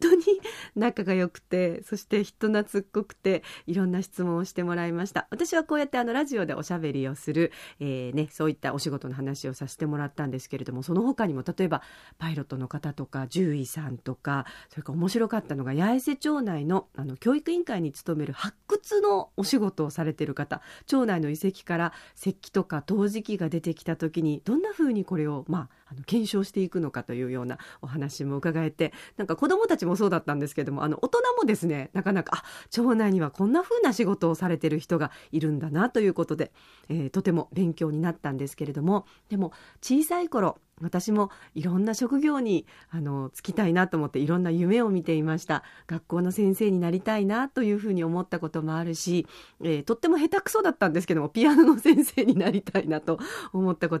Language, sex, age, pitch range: Japanese, female, 40-59, 155-205 Hz